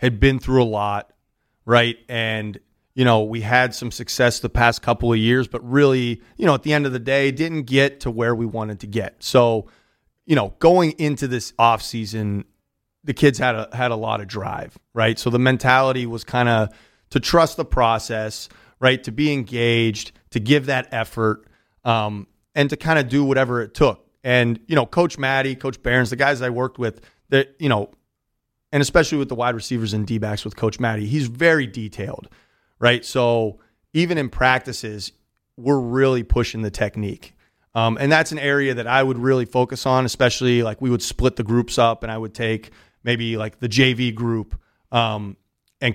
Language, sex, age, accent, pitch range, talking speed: English, male, 30-49, American, 115-135 Hz, 195 wpm